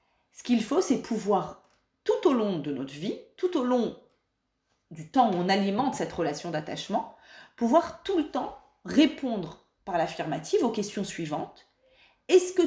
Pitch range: 190-295 Hz